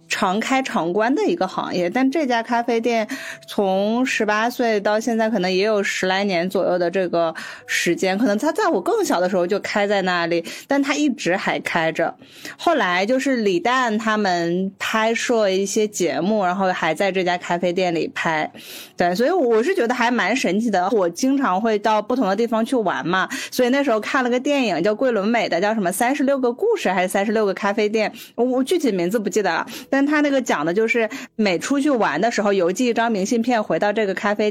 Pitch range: 190-245 Hz